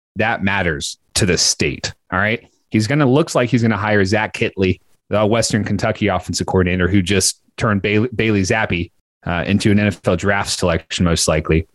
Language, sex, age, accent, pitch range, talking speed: English, male, 30-49, American, 100-140 Hz, 190 wpm